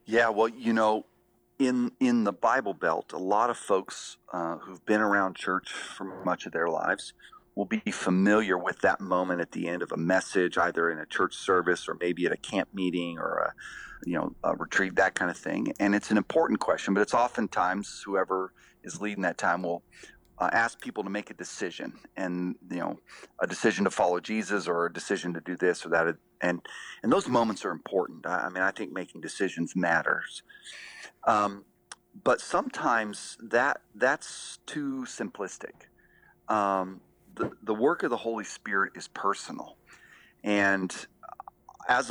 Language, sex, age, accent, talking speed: English, male, 40-59, American, 180 wpm